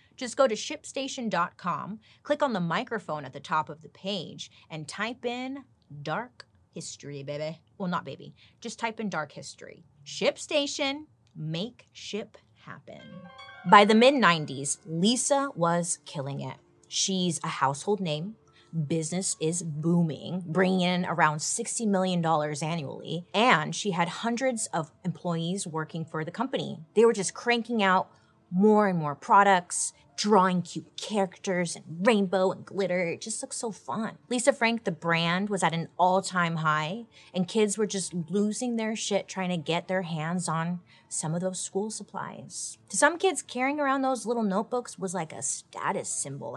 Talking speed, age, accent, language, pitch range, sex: 160 wpm, 30-49, American, English, 160-220 Hz, female